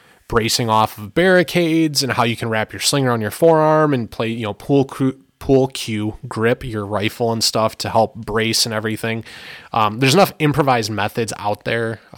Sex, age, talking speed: male, 20-39, 195 wpm